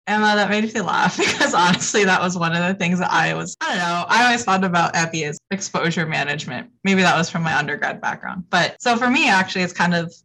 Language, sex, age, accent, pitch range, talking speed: English, female, 20-39, American, 165-195 Hz, 245 wpm